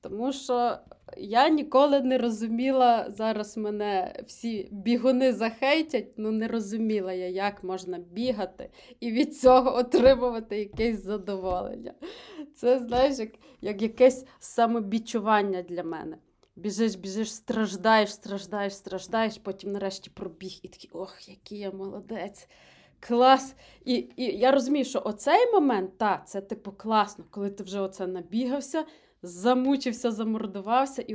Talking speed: 125 wpm